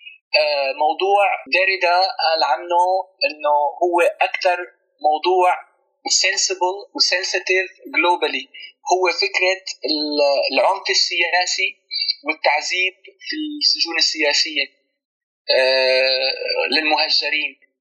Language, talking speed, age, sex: Arabic, 60 wpm, 20-39, male